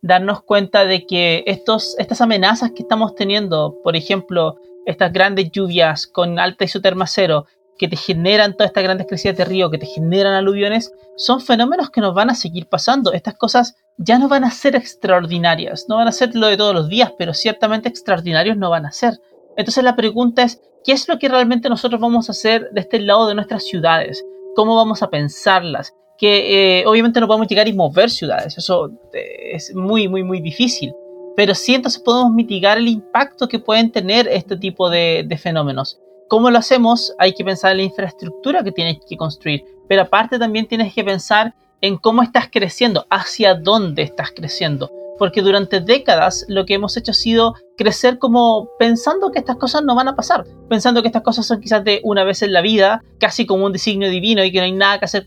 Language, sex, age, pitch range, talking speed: Spanish, male, 30-49, 185-230 Hz, 205 wpm